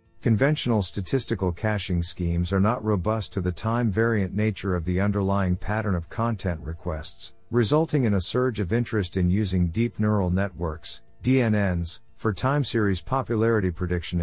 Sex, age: male, 50-69